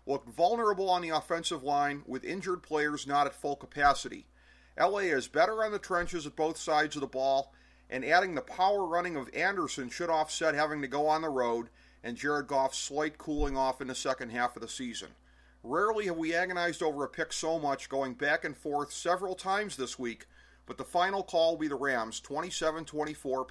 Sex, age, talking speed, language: male, 40-59, 200 wpm, English